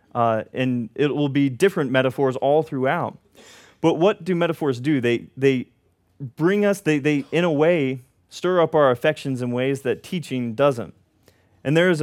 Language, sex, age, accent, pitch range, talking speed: English, male, 20-39, American, 105-160 Hz, 175 wpm